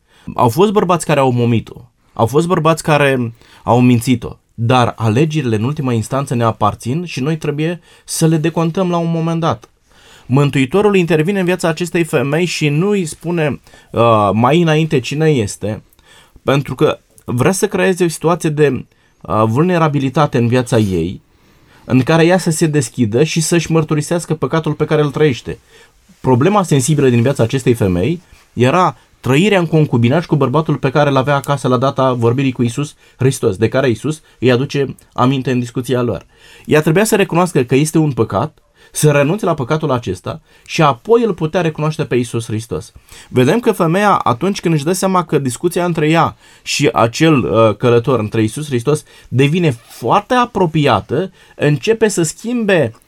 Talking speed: 165 wpm